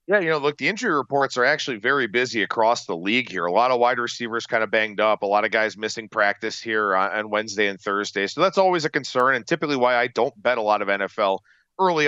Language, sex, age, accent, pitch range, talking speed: English, male, 40-59, American, 115-170 Hz, 255 wpm